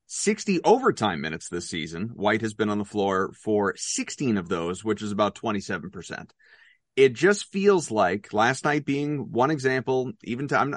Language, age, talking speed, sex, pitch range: English, 30-49, 185 wpm, male, 120-165 Hz